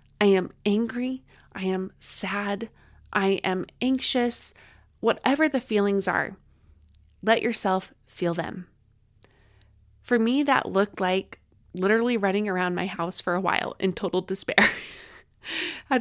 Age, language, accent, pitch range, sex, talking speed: 20-39, English, American, 185-250 Hz, female, 125 wpm